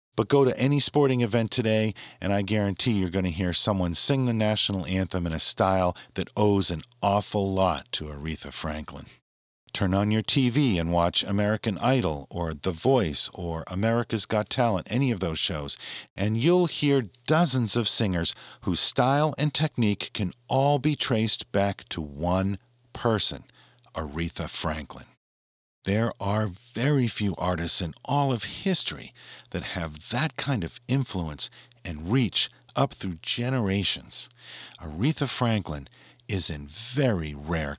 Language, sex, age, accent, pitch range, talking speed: English, male, 50-69, American, 85-130 Hz, 150 wpm